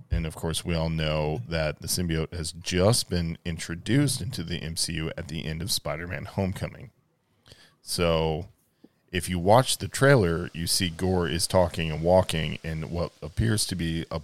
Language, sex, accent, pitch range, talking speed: English, male, American, 80-95 Hz, 175 wpm